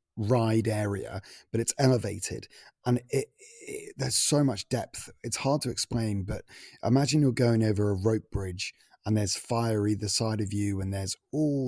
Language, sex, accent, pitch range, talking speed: English, male, British, 100-115 Hz, 175 wpm